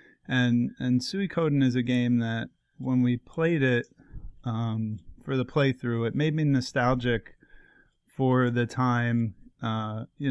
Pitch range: 115-135 Hz